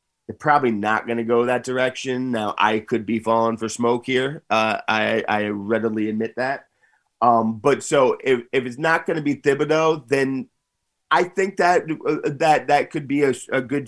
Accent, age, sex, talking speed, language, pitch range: American, 30-49, male, 185 wpm, English, 110-135 Hz